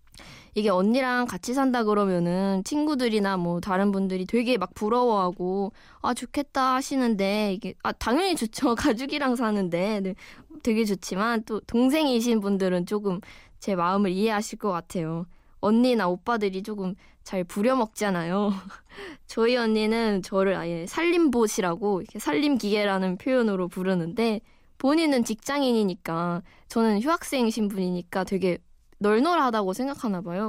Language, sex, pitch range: Korean, female, 190-245 Hz